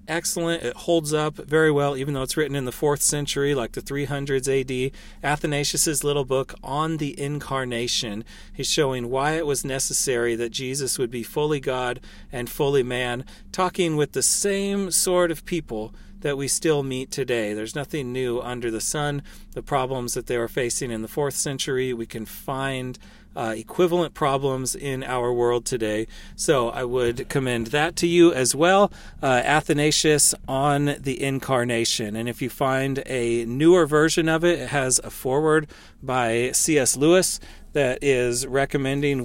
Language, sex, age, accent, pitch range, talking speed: English, male, 40-59, American, 120-145 Hz, 170 wpm